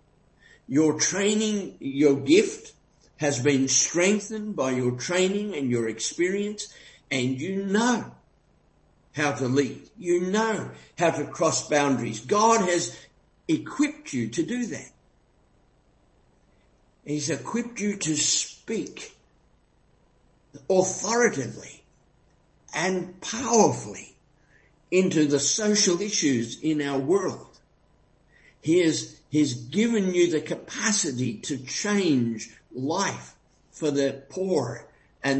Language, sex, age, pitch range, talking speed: English, male, 50-69, 145-205 Hz, 105 wpm